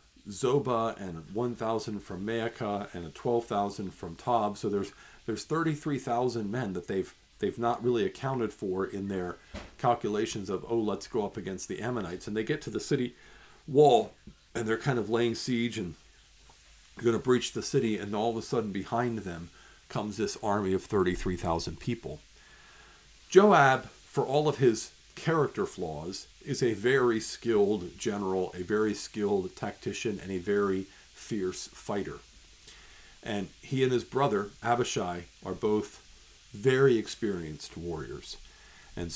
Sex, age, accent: male, 50-69, American